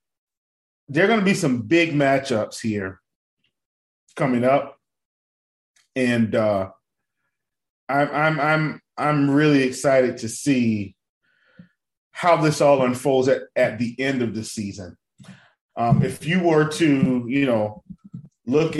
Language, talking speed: English, 130 wpm